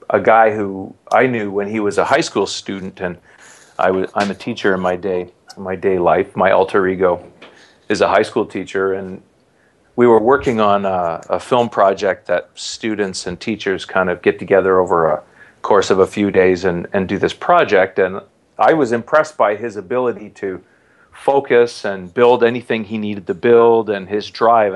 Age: 40-59